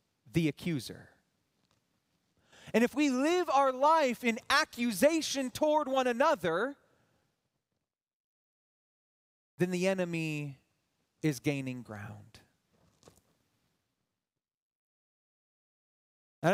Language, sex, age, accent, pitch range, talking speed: English, male, 30-49, American, 200-275 Hz, 75 wpm